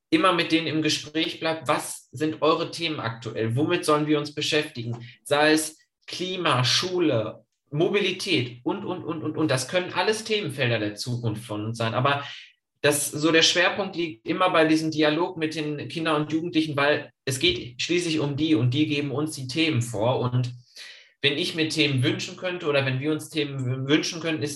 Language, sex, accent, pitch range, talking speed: German, male, German, 135-165 Hz, 190 wpm